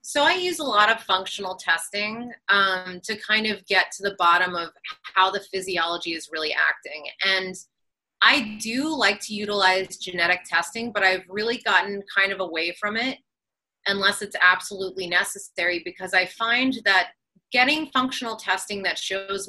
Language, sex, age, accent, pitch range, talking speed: English, female, 30-49, American, 185-225 Hz, 165 wpm